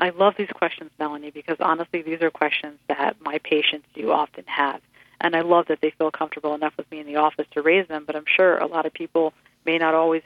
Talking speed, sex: 245 wpm, female